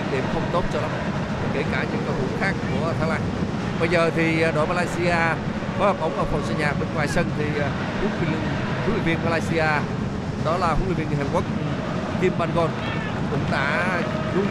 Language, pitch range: Vietnamese, 175-210 Hz